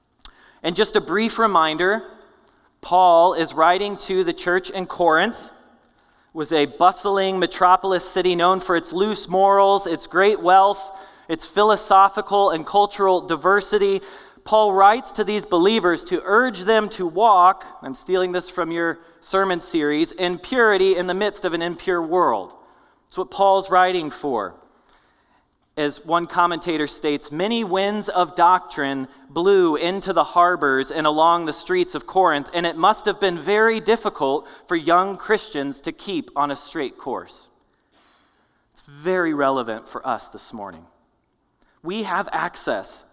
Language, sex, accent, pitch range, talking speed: English, male, American, 165-200 Hz, 150 wpm